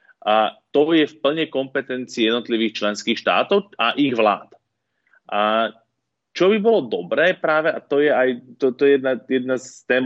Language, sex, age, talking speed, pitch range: Slovak, male, 30-49, 175 wpm, 110-140 Hz